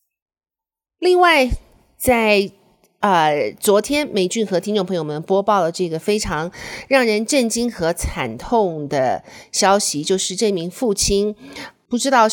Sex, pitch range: female, 170-220 Hz